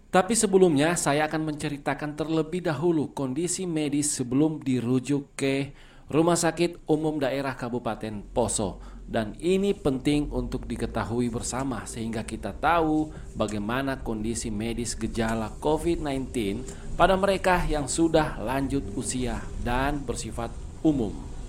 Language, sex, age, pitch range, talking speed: Indonesian, male, 40-59, 120-165 Hz, 115 wpm